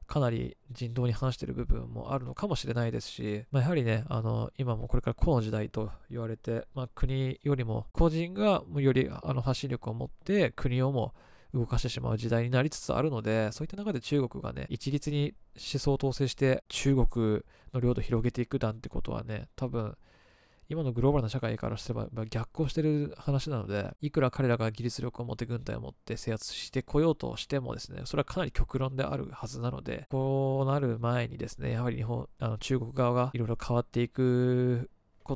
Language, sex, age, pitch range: Japanese, male, 20-39, 115-135 Hz